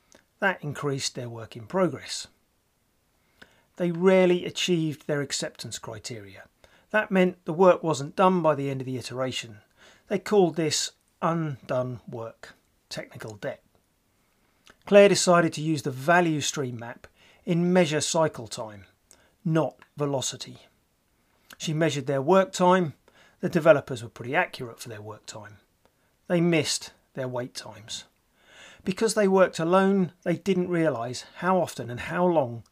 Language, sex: English, male